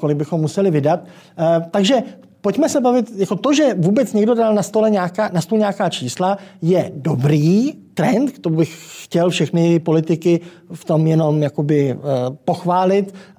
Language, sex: Czech, male